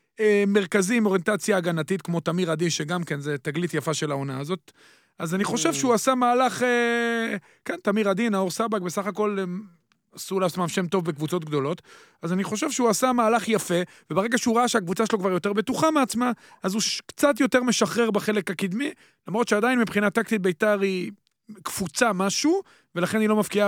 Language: Hebrew